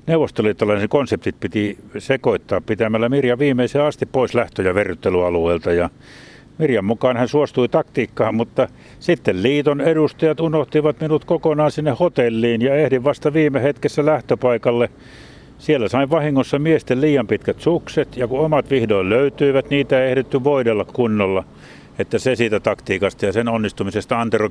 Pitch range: 105-145 Hz